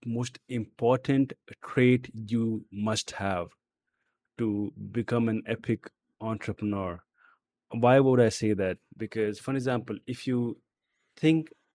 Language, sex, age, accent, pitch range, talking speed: English, male, 30-49, Indian, 110-135 Hz, 110 wpm